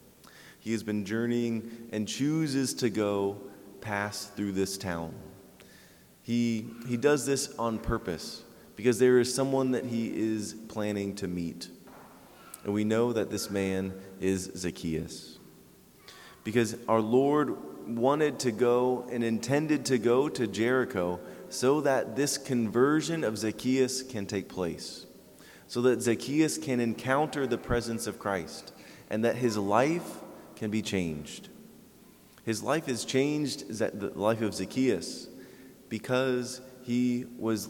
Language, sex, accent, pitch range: English, male, American, 105-125 Hz